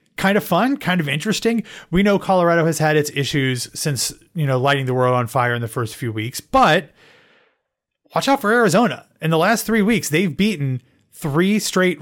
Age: 30-49